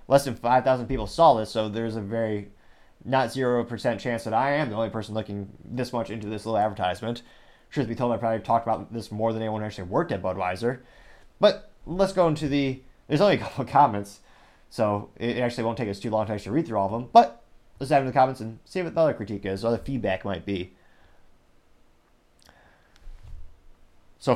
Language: English